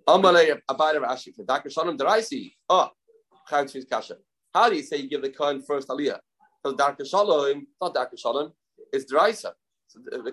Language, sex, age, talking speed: English, male, 30-49, 175 wpm